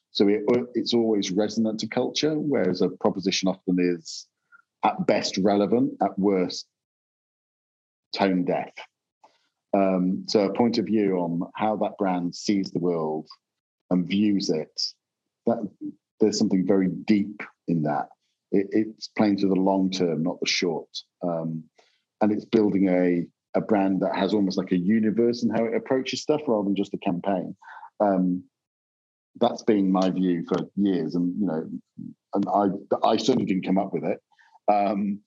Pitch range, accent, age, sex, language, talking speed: 95-105 Hz, British, 40-59, male, English, 160 wpm